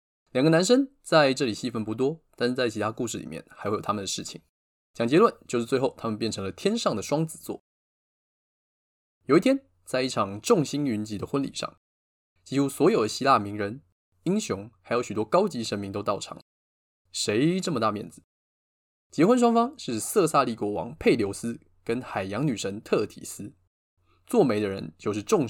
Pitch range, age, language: 105-160 Hz, 20-39, Chinese